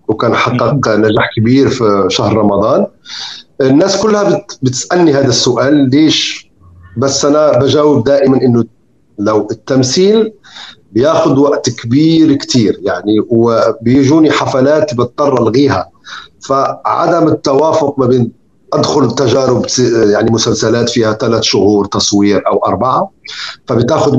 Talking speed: 110 wpm